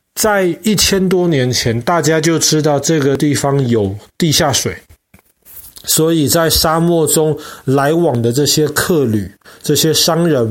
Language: Chinese